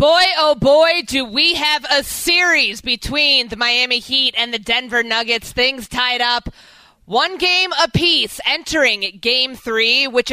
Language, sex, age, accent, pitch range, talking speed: English, female, 20-39, American, 195-255 Hz, 150 wpm